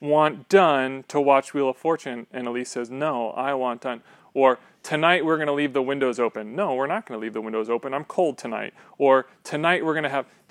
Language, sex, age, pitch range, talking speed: English, male, 30-49, 130-165 Hz, 235 wpm